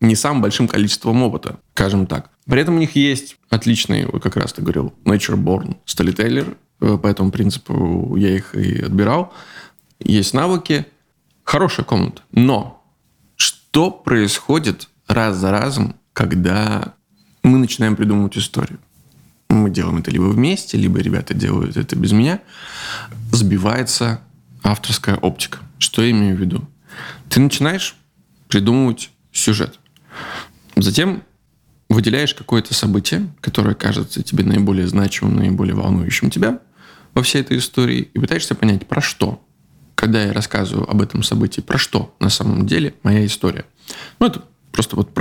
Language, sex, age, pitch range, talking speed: Russian, male, 20-39, 100-130 Hz, 135 wpm